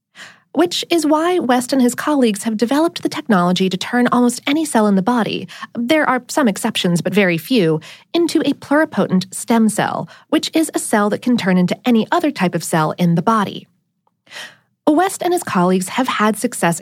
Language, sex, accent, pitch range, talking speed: English, female, American, 185-280 Hz, 185 wpm